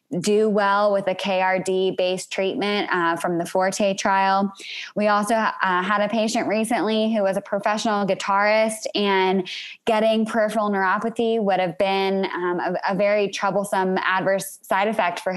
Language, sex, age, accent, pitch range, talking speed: English, female, 20-39, American, 185-215 Hz, 150 wpm